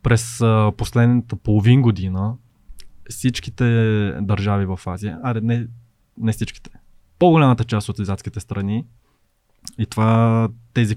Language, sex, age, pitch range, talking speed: Bulgarian, male, 20-39, 105-120 Hz, 120 wpm